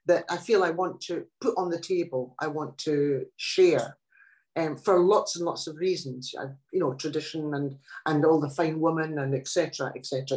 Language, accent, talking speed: English, British, 210 wpm